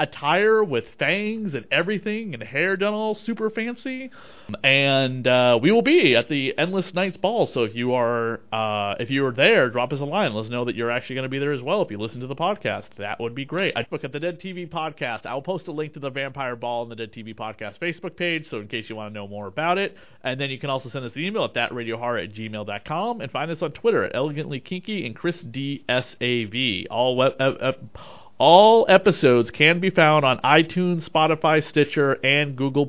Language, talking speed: English, 230 wpm